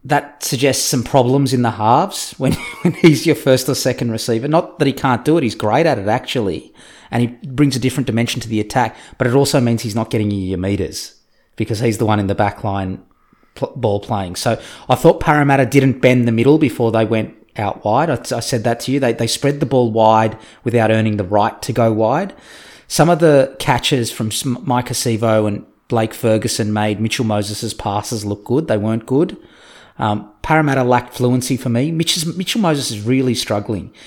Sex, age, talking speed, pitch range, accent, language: male, 30-49, 210 wpm, 110-140 Hz, Australian, English